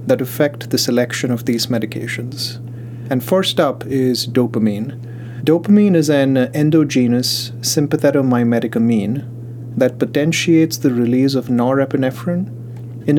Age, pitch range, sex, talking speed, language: 30-49, 120-145 Hz, male, 115 wpm, English